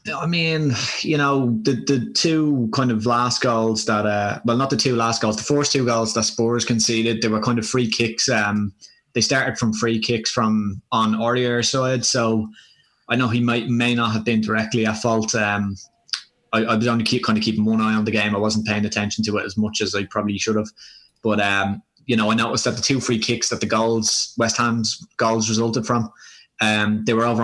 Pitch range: 110-120 Hz